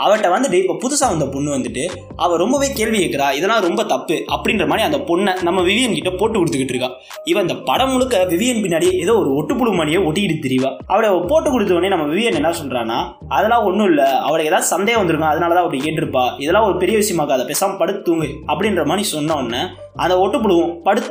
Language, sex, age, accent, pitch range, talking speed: Tamil, male, 20-39, native, 165-245 Hz, 185 wpm